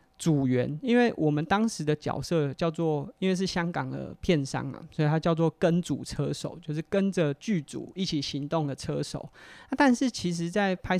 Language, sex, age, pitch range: Chinese, male, 30-49, 145-180 Hz